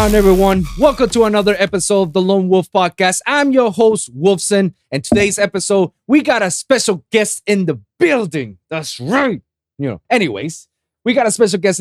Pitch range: 165-225 Hz